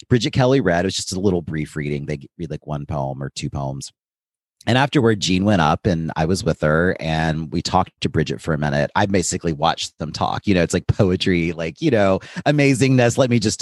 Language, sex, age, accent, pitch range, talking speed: English, male, 30-49, American, 85-115 Hz, 235 wpm